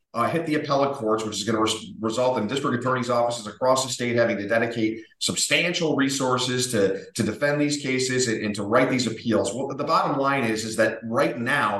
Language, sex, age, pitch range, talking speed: English, male, 40-59, 110-140 Hz, 220 wpm